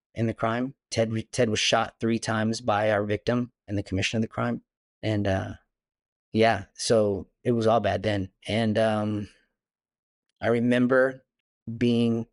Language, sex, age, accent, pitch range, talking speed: English, male, 30-49, American, 105-125 Hz, 155 wpm